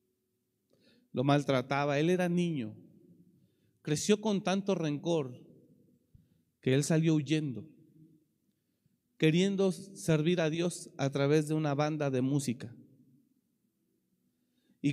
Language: Spanish